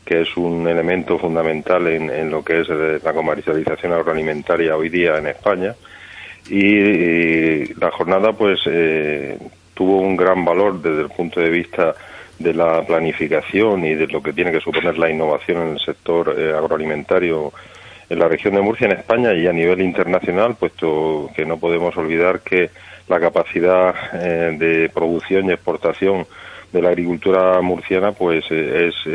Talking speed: 165 wpm